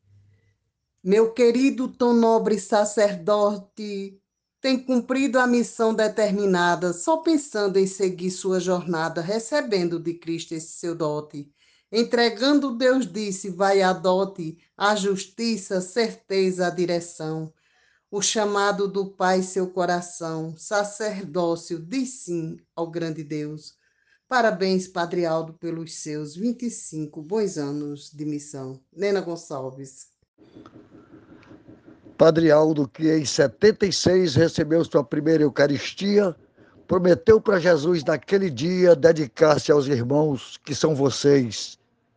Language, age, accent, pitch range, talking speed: Portuguese, 20-39, Brazilian, 160-205 Hz, 110 wpm